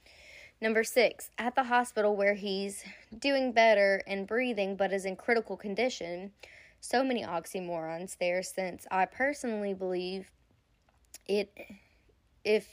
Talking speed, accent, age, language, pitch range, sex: 125 wpm, American, 10-29, English, 195-240 Hz, female